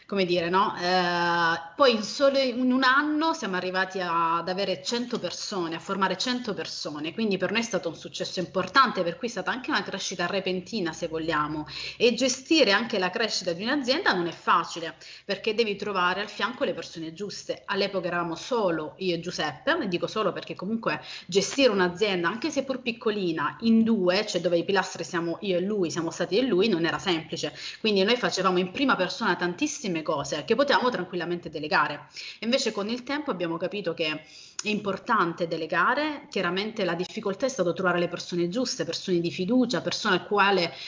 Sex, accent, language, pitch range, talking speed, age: female, native, Italian, 175-215 Hz, 190 wpm, 30-49